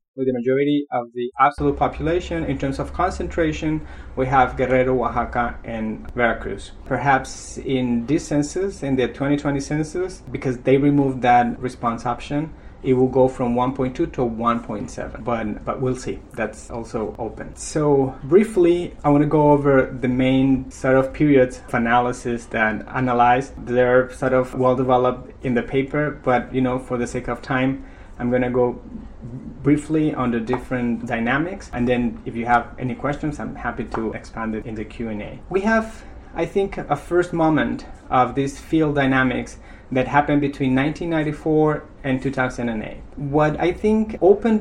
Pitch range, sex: 125-150 Hz, male